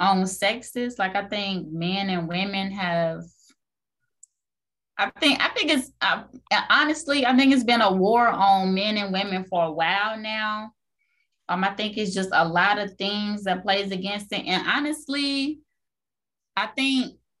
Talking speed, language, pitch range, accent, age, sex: 160 wpm, English, 185-220 Hz, American, 20-39, female